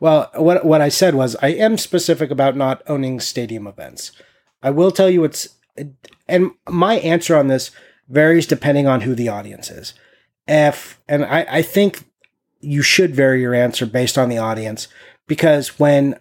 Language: English